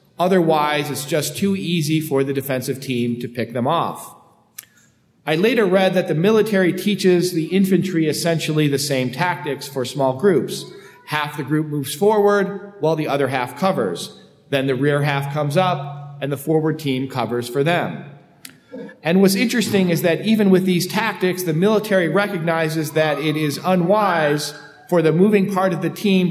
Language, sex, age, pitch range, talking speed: English, male, 40-59, 140-185 Hz, 170 wpm